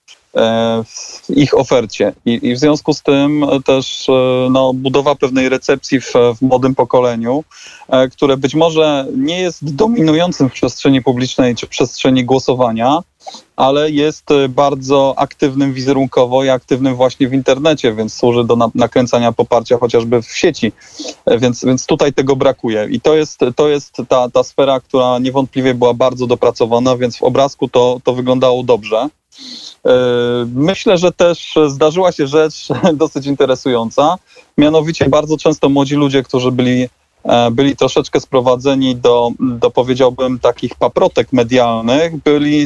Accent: native